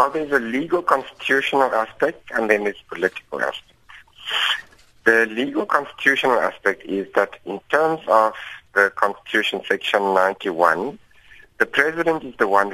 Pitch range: 95-130 Hz